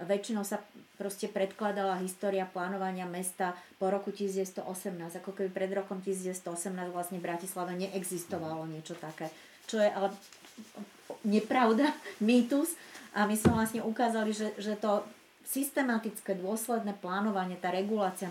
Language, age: Slovak, 30-49